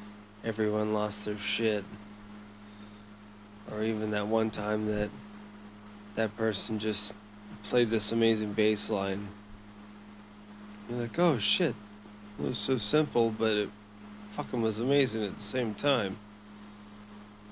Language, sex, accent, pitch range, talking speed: English, male, American, 105-110 Hz, 120 wpm